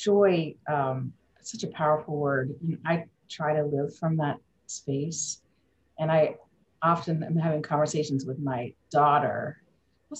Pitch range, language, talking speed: 145-195 Hz, English, 145 wpm